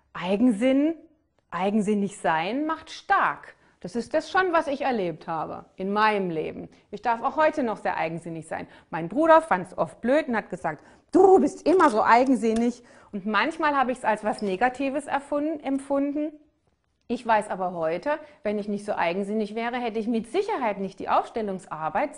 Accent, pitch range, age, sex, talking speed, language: German, 195-280 Hz, 30-49, female, 175 wpm, German